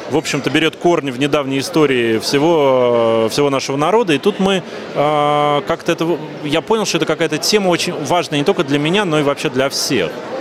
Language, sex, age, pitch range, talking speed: Russian, male, 30-49, 140-165 Hz, 195 wpm